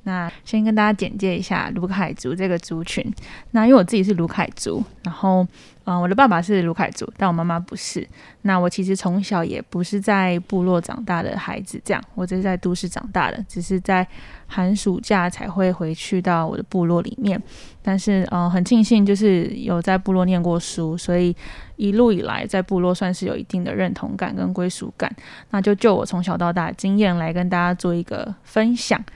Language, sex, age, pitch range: Chinese, female, 10-29, 180-210 Hz